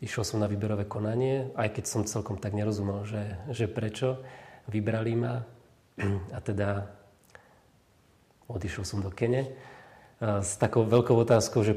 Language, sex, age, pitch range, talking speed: Slovak, male, 40-59, 105-120 Hz, 140 wpm